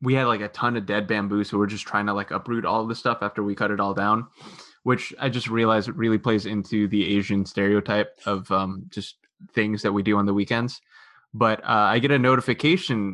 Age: 20-39